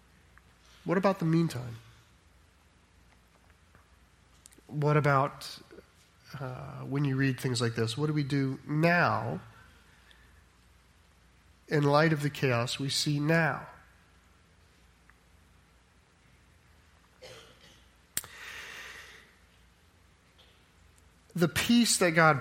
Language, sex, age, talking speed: English, male, 30-49, 80 wpm